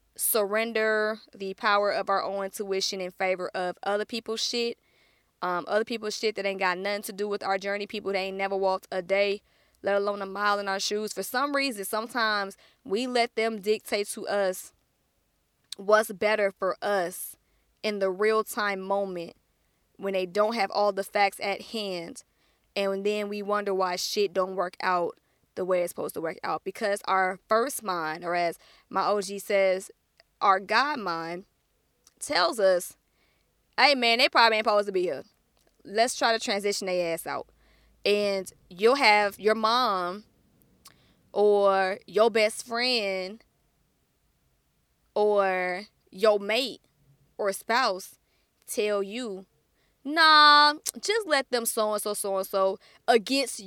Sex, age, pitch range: female, 20-39, 190-225 Hz